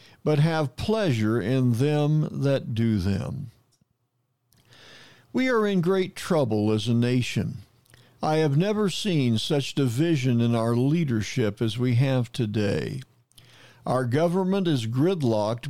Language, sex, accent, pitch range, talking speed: English, male, American, 120-170 Hz, 125 wpm